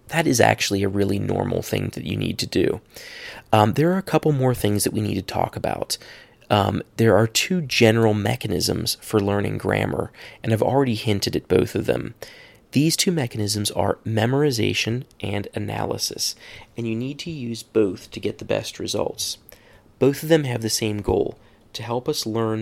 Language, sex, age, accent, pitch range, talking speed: English, male, 30-49, American, 105-130 Hz, 190 wpm